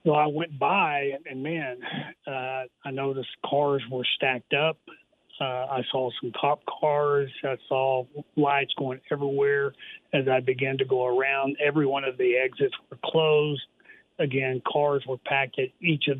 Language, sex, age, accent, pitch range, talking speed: English, male, 40-59, American, 130-150 Hz, 165 wpm